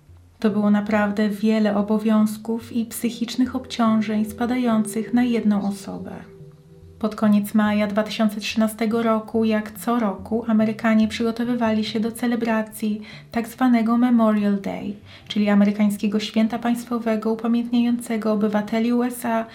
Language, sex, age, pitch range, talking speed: Polish, female, 30-49, 205-225 Hz, 105 wpm